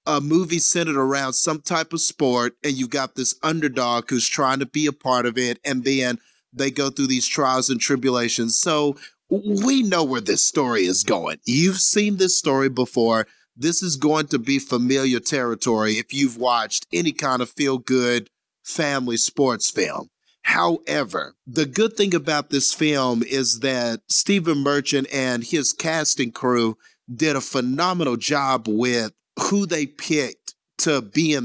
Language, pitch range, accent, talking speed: English, 130-160 Hz, American, 165 wpm